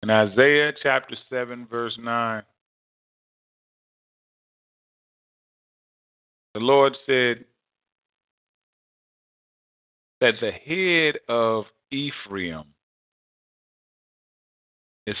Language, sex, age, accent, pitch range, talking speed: English, male, 40-59, American, 95-120 Hz, 60 wpm